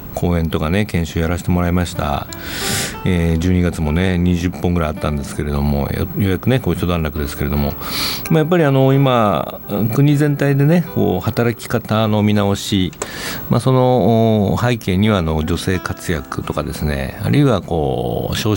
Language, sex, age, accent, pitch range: Japanese, male, 60-79, native, 80-125 Hz